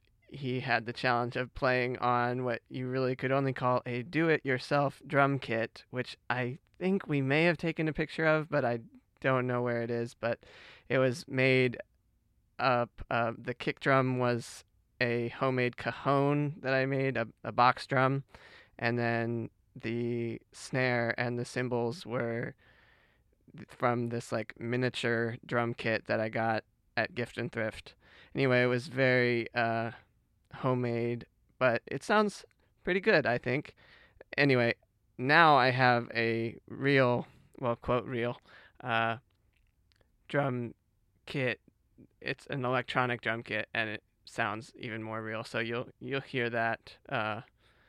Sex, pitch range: male, 115-135 Hz